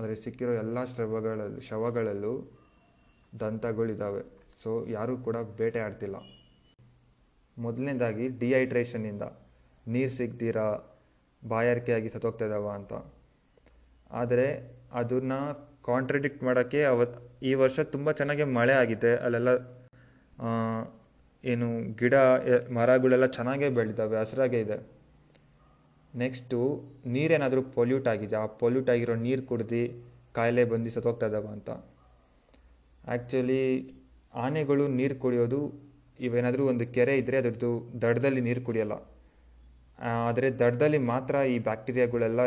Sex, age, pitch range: male, 20-39, 110-130 Hz